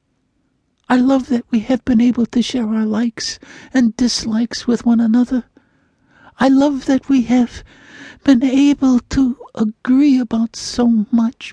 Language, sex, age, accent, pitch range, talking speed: English, male, 60-79, American, 220-265 Hz, 145 wpm